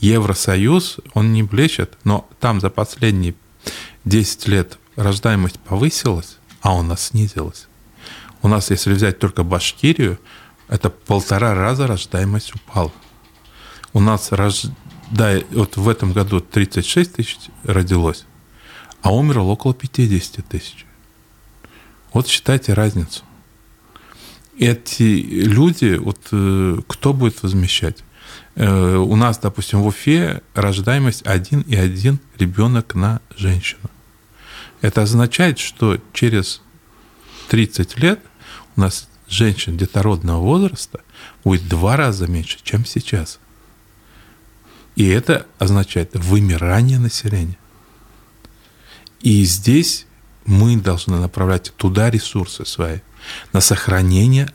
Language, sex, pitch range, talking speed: Russian, male, 95-115 Hz, 100 wpm